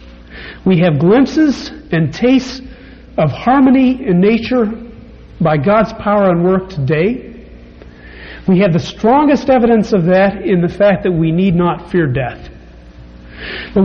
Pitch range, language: 155-220 Hz, English